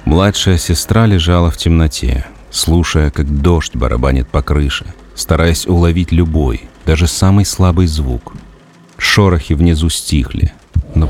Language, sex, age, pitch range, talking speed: Russian, male, 40-59, 80-95 Hz, 120 wpm